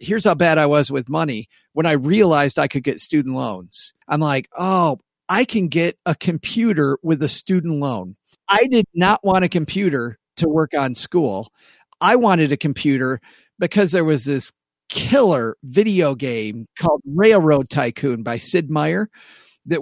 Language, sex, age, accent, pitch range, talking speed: English, male, 40-59, American, 140-185 Hz, 165 wpm